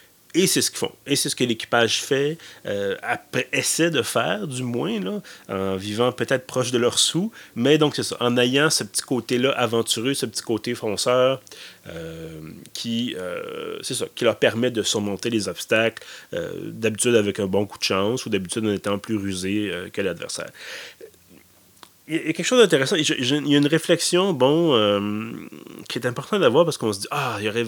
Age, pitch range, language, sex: 30-49, 110-135 Hz, French, male